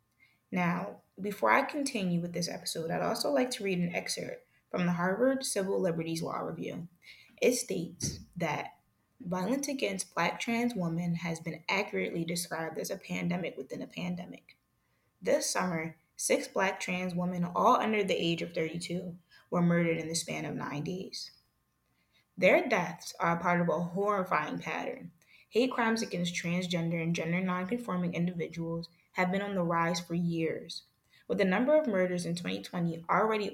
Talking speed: 165 wpm